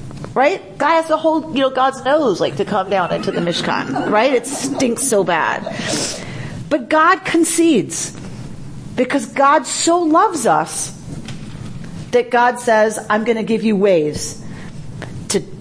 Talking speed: 145 wpm